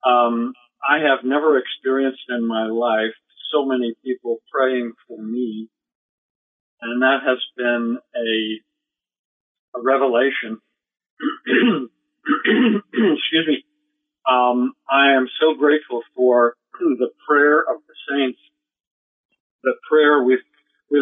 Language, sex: English, male